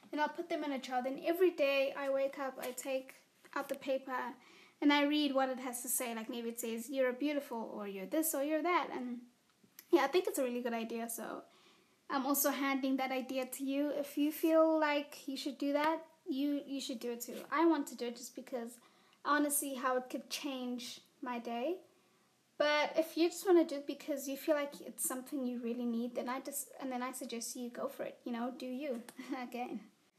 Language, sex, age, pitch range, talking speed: English, female, 20-39, 245-290 Hz, 240 wpm